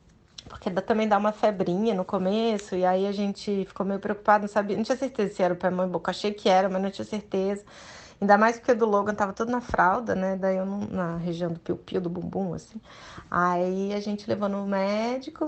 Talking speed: 235 wpm